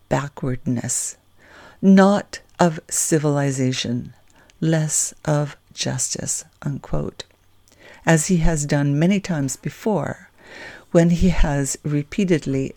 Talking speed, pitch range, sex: 85 wpm, 135-170 Hz, female